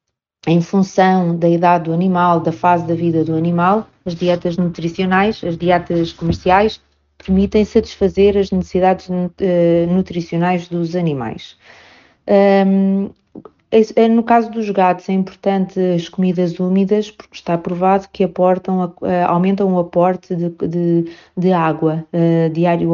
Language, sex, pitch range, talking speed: Portuguese, female, 170-190 Hz, 120 wpm